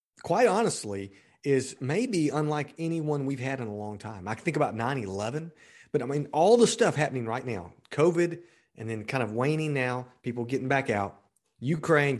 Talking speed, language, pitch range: 185 wpm, English, 110-145 Hz